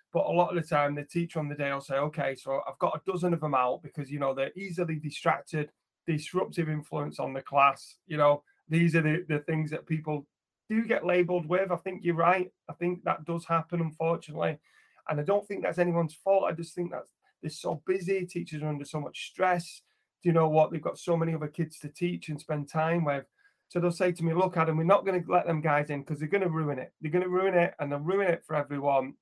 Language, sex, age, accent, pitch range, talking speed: English, male, 30-49, British, 145-175 Hz, 255 wpm